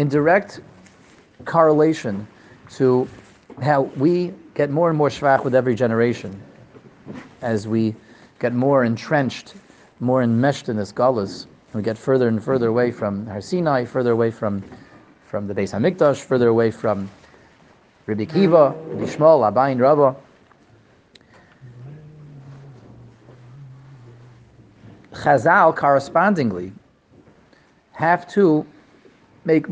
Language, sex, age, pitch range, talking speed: English, male, 40-59, 115-150 Hz, 105 wpm